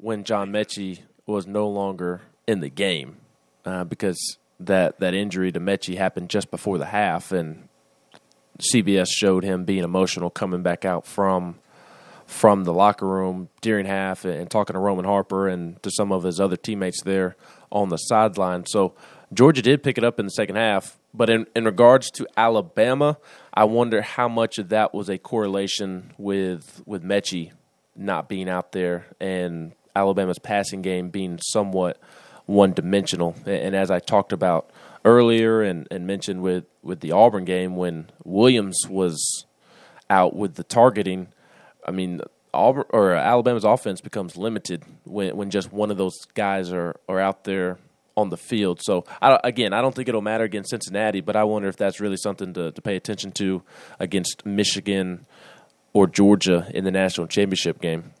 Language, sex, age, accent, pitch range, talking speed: English, male, 20-39, American, 90-105 Hz, 175 wpm